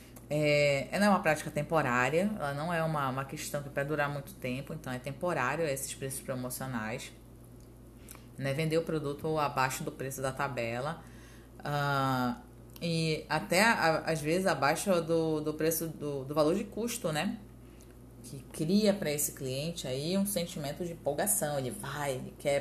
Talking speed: 165 wpm